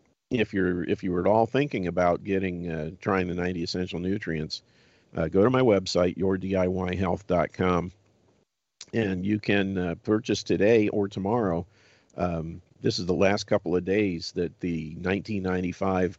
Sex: male